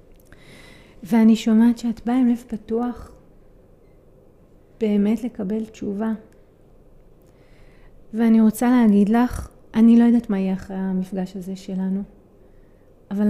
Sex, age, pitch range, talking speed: female, 30-49, 190-220 Hz, 110 wpm